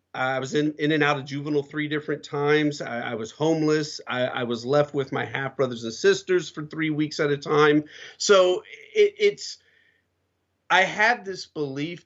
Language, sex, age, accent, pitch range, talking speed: English, male, 40-59, American, 140-175 Hz, 185 wpm